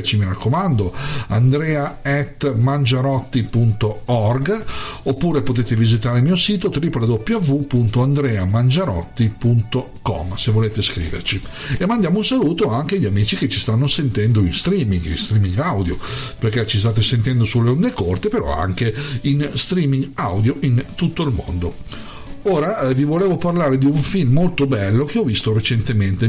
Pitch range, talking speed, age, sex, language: 105-135 Hz, 135 wpm, 50-69, male, Italian